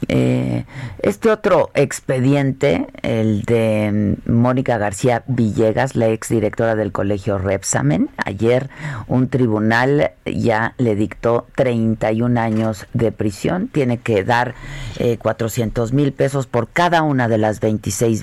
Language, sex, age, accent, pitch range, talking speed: Spanish, female, 40-59, Mexican, 110-135 Hz, 125 wpm